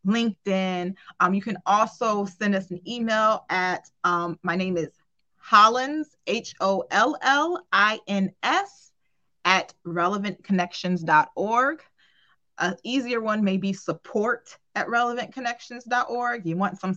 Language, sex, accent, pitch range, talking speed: English, female, American, 180-225 Hz, 105 wpm